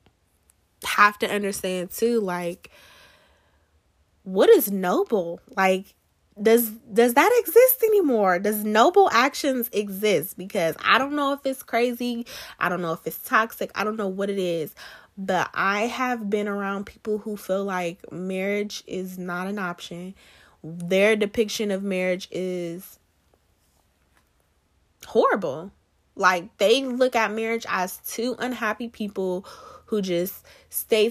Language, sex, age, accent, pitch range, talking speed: English, female, 20-39, American, 160-220 Hz, 135 wpm